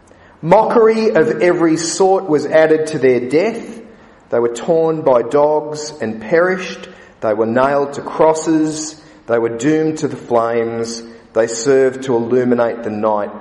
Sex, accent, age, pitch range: male, Australian, 40-59, 130-180 Hz